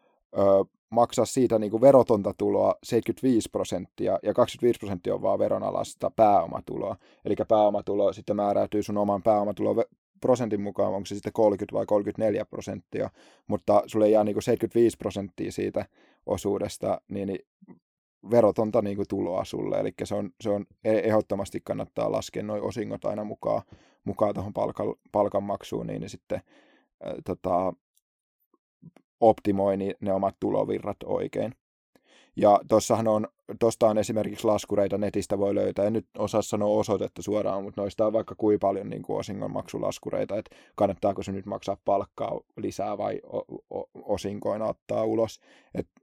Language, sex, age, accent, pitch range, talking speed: Finnish, male, 20-39, native, 100-110 Hz, 140 wpm